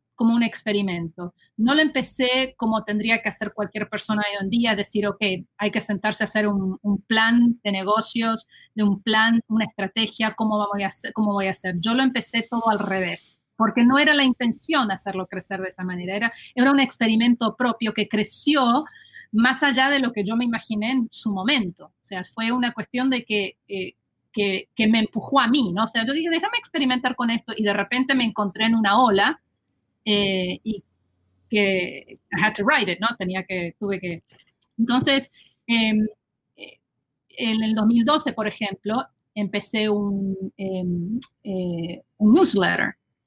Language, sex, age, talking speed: Spanish, female, 30-49, 180 wpm